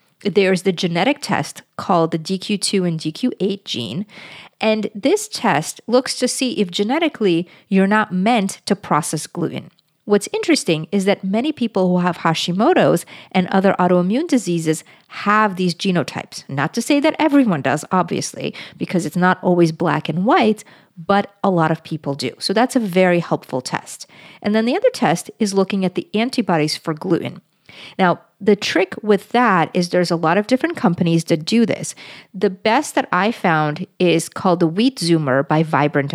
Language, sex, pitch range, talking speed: English, female, 170-210 Hz, 175 wpm